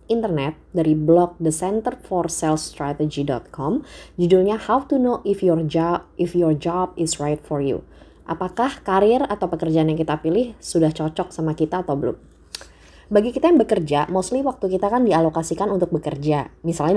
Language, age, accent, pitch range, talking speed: Indonesian, 20-39, native, 155-190 Hz, 150 wpm